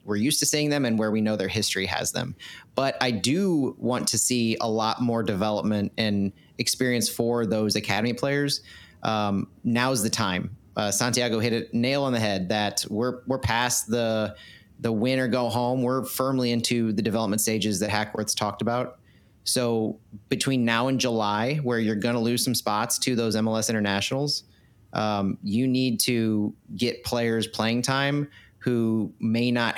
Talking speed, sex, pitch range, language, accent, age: 175 wpm, male, 110-130 Hz, English, American, 30-49